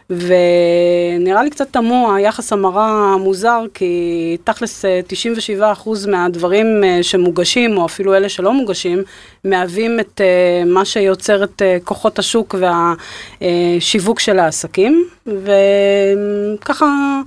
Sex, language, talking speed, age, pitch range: female, Hebrew, 95 wpm, 30-49, 185-235 Hz